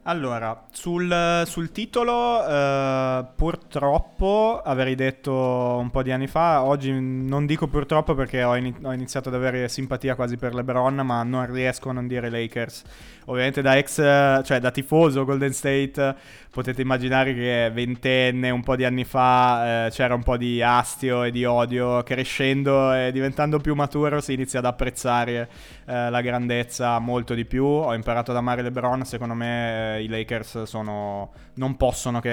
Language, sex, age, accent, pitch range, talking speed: Italian, male, 20-39, native, 115-130 Hz, 155 wpm